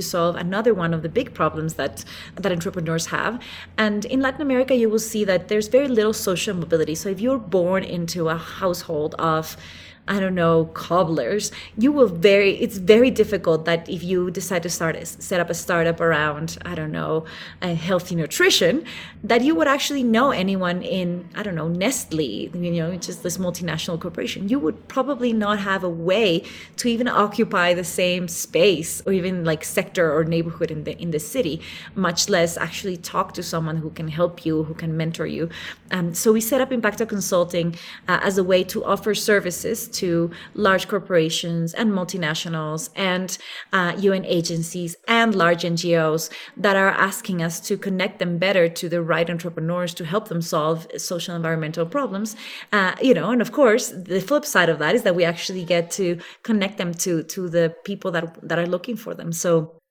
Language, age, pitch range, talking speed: English, 30-49, 170-210 Hz, 190 wpm